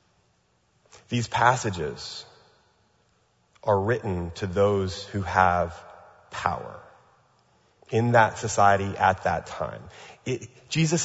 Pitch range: 110-150 Hz